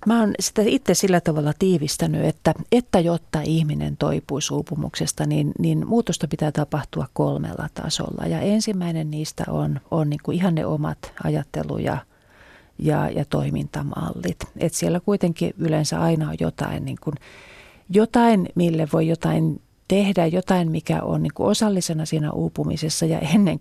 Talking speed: 140 wpm